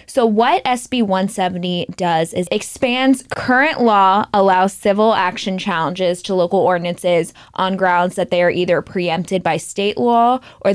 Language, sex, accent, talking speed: English, female, American, 150 wpm